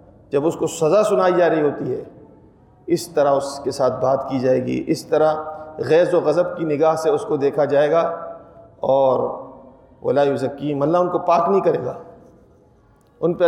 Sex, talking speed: male, 190 wpm